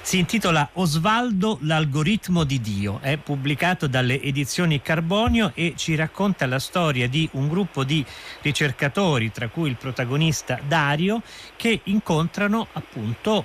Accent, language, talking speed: native, Italian, 135 wpm